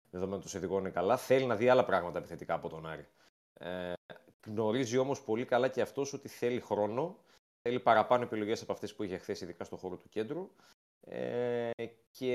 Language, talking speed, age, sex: Greek, 190 wpm, 30-49, male